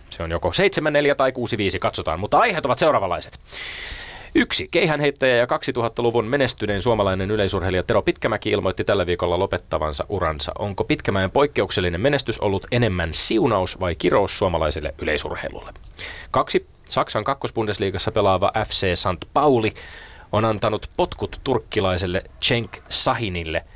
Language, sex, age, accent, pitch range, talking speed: Finnish, male, 30-49, native, 90-115 Hz, 125 wpm